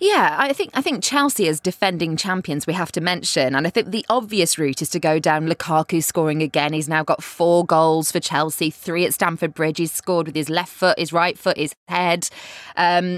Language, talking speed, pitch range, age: English, 225 wpm, 155-200 Hz, 20-39